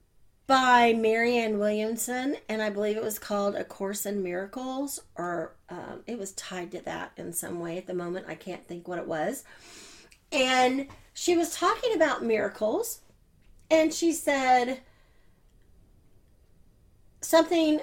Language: English